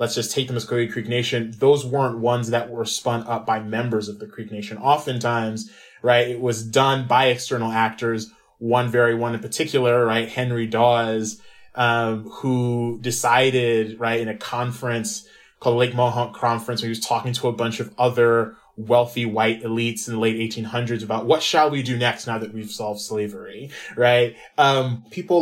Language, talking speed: English, 180 wpm